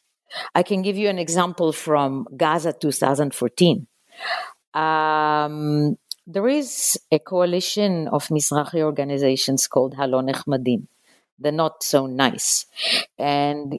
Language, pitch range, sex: English, 140-180 Hz, female